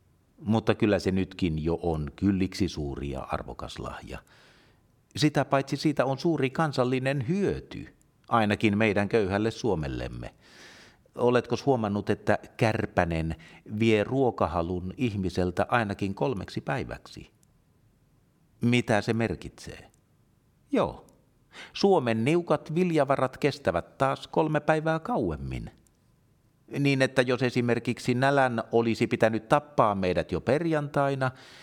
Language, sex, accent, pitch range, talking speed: Finnish, male, native, 90-130 Hz, 105 wpm